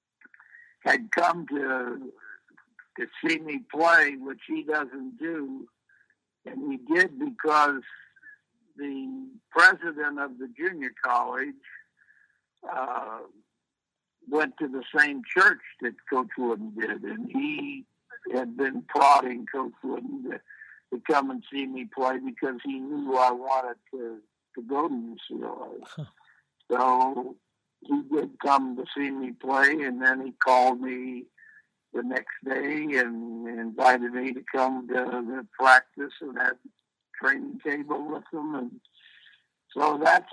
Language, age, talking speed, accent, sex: English, 60-79, 130 wpm, American, male